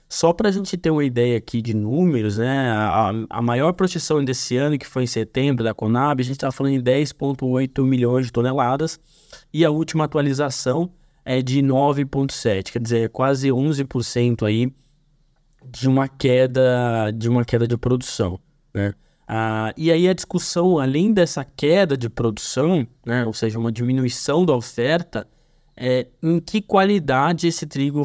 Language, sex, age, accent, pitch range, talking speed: Portuguese, male, 20-39, Brazilian, 120-150 Hz, 155 wpm